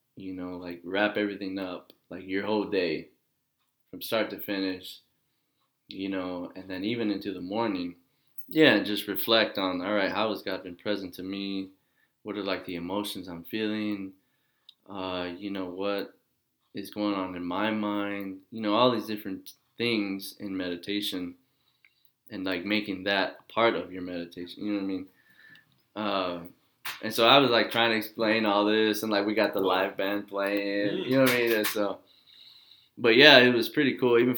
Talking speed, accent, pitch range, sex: 185 wpm, American, 95-110 Hz, male